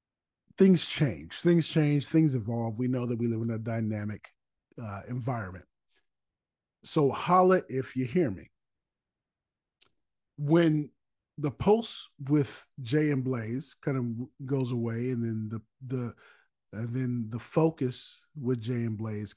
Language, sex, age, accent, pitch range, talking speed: English, male, 40-59, American, 120-155 Hz, 145 wpm